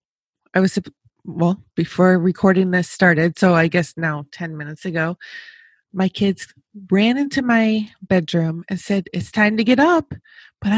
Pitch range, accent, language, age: 180-225 Hz, American, English, 20-39